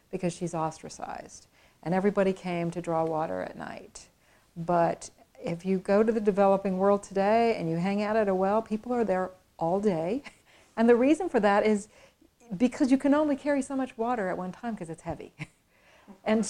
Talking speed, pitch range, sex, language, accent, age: 195 wpm, 185-235 Hz, female, English, American, 40-59